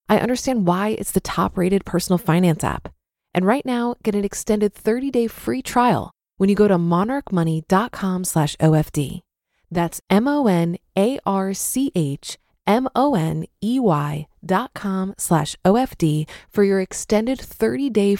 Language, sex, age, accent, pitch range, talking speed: English, female, 20-39, American, 175-230 Hz, 115 wpm